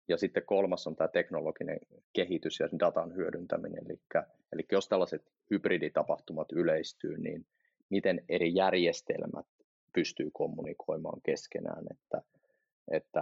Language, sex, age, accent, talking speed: Finnish, male, 30-49, native, 115 wpm